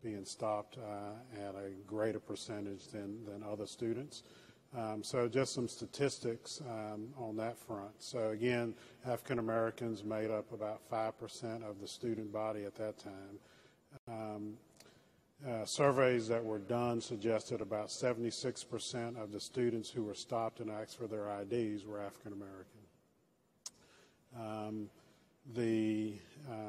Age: 40-59